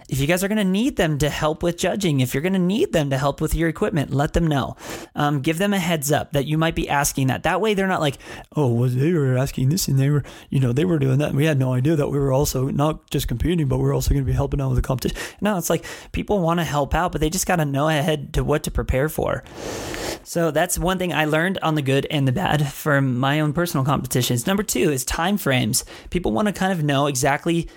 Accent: American